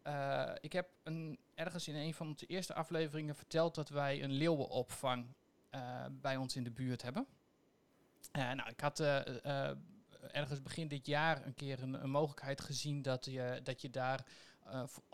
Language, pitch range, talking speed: Dutch, 130-150 Hz, 180 wpm